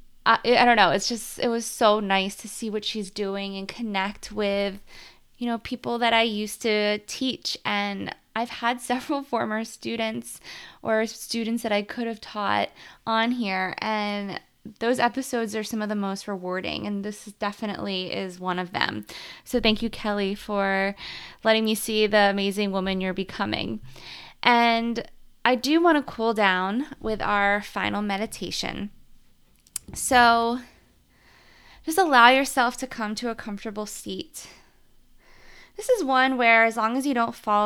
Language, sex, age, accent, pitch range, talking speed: English, female, 20-39, American, 200-235 Hz, 160 wpm